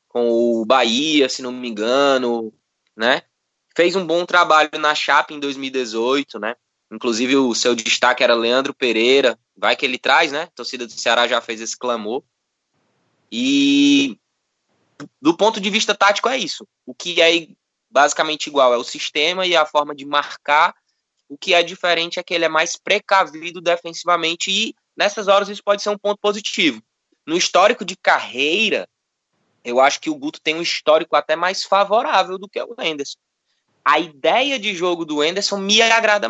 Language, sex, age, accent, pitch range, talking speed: Portuguese, male, 20-39, Brazilian, 140-200 Hz, 175 wpm